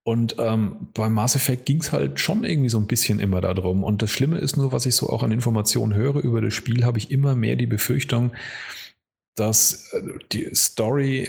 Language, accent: German, German